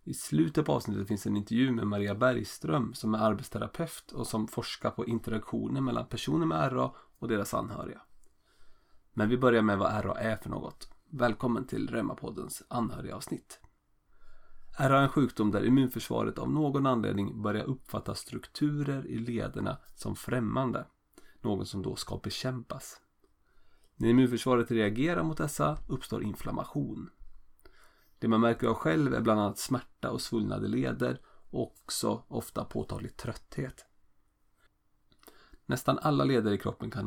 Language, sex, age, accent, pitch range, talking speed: Swedish, male, 30-49, native, 105-125 Hz, 145 wpm